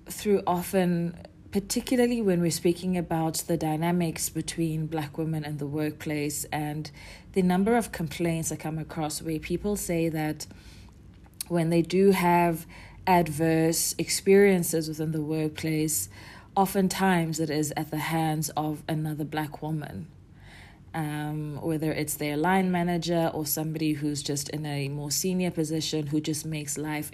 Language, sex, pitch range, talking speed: English, female, 150-180 Hz, 145 wpm